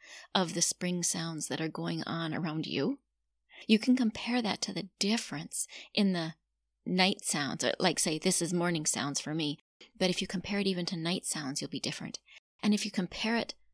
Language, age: English, 30-49